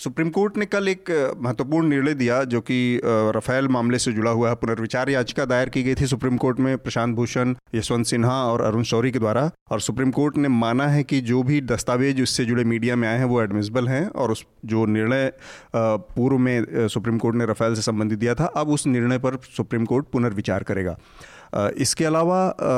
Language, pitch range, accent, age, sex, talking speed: Hindi, 115-135 Hz, native, 30-49, male, 205 wpm